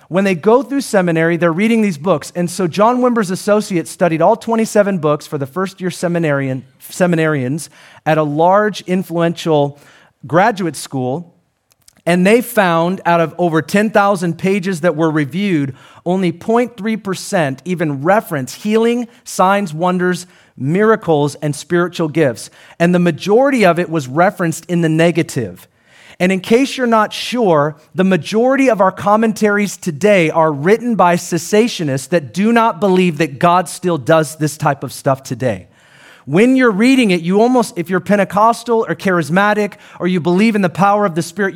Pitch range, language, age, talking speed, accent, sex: 165-215 Hz, English, 40-59, 160 wpm, American, male